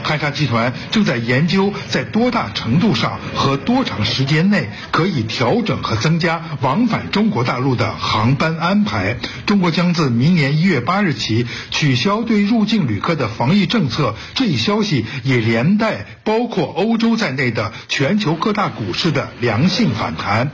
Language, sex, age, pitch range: Chinese, male, 60-79, 130-205 Hz